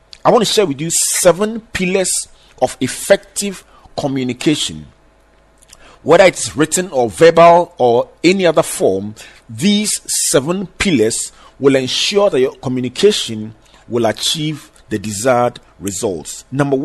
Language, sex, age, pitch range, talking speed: English, male, 40-59, 110-175 Hz, 120 wpm